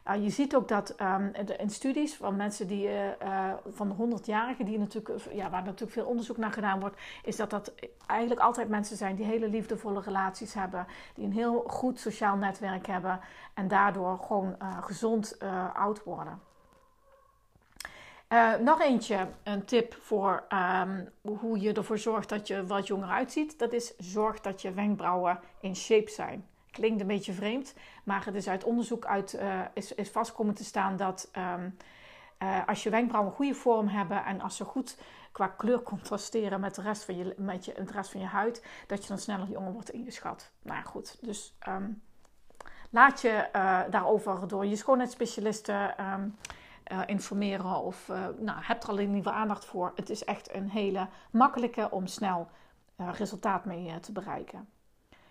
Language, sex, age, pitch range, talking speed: Dutch, female, 40-59, 195-225 Hz, 180 wpm